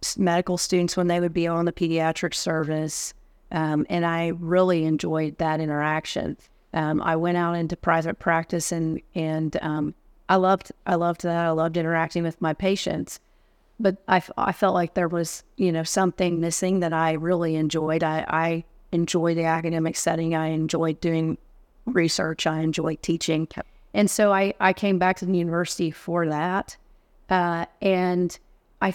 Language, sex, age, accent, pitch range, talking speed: English, female, 30-49, American, 160-180 Hz, 165 wpm